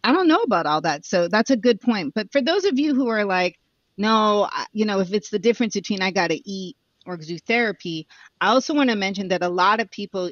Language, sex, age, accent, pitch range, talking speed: English, female, 30-49, American, 170-215 Hz, 255 wpm